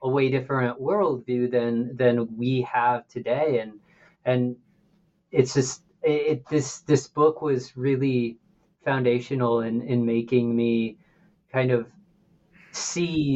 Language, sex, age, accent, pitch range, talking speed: English, male, 30-49, American, 125-155 Hz, 125 wpm